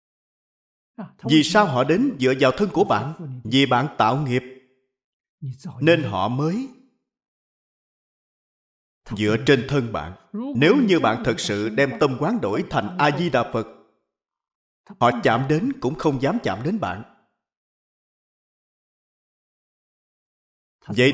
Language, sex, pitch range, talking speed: Vietnamese, male, 110-170 Hz, 125 wpm